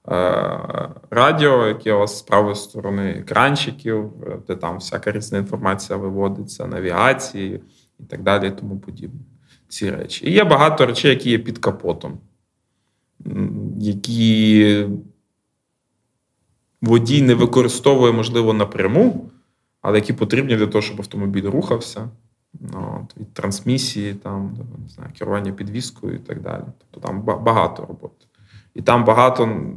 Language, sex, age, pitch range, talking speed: Ukrainian, male, 20-39, 105-120 Hz, 120 wpm